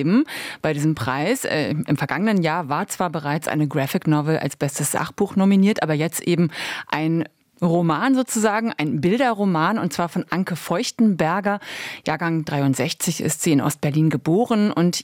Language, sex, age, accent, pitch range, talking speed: German, female, 30-49, German, 155-200 Hz, 150 wpm